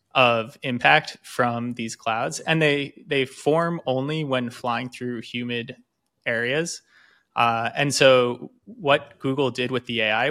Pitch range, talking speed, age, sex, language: 120-140 Hz, 140 wpm, 20-39, male, English